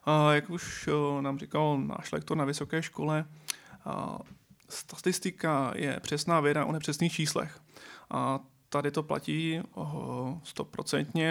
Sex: male